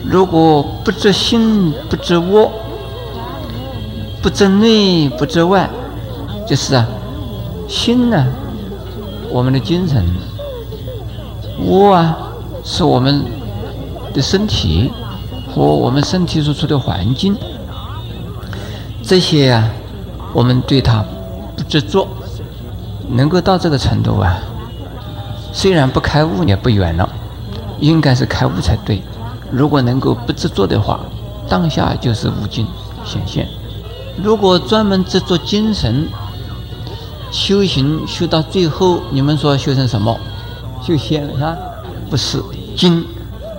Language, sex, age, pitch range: Chinese, male, 50-69, 110-160 Hz